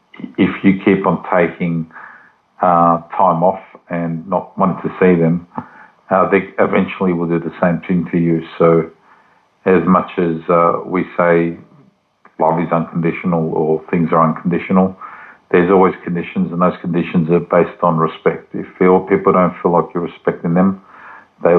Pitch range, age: 85-90 Hz, 50-69